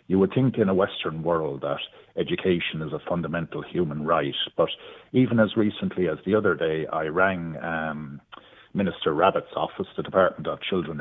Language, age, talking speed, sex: English, 50-69, 175 wpm, male